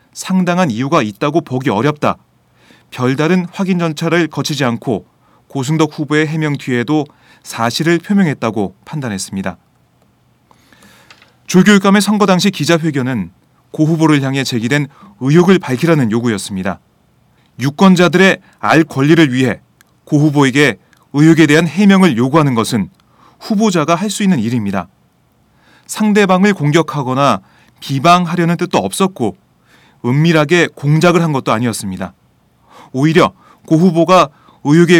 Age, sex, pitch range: 30-49, male, 130-175 Hz